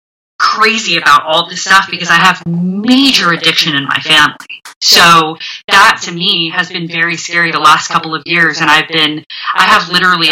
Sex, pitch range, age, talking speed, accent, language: female, 165-195 Hz, 20-39, 185 wpm, American, English